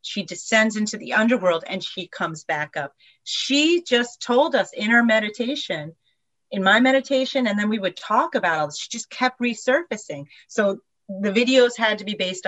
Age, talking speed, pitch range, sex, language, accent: 40-59, 190 wpm, 175-225 Hz, female, English, American